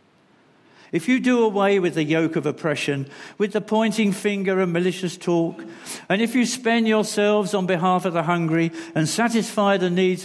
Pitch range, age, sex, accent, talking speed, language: 160-210 Hz, 50-69, male, British, 175 wpm, English